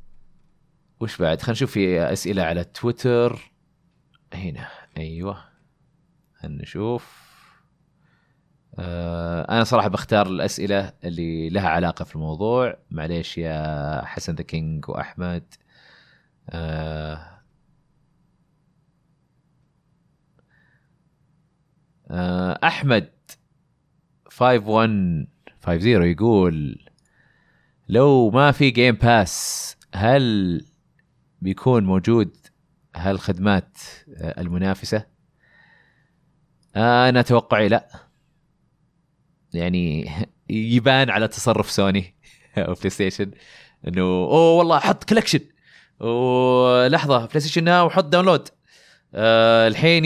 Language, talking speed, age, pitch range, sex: Arabic, 80 wpm, 30-49, 90-145 Hz, male